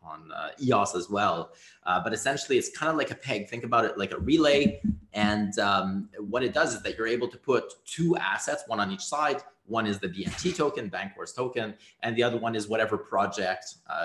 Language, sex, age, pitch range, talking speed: English, male, 30-49, 105-155 Hz, 220 wpm